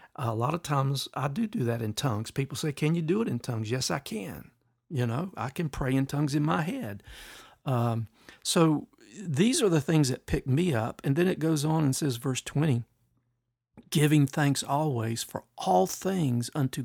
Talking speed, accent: 205 wpm, American